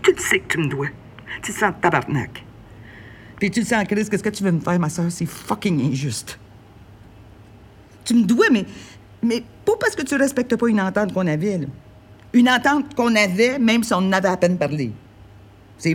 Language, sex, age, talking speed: French, female, 50-69, 215 wpm